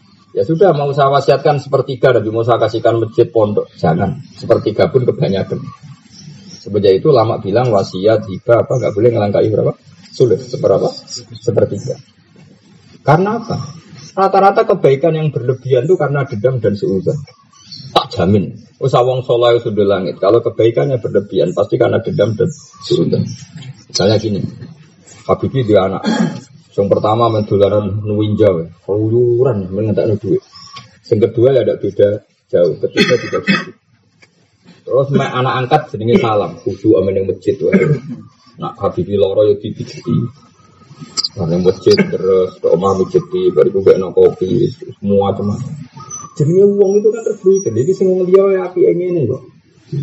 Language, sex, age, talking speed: Malay, male, 30-49, 135 wpm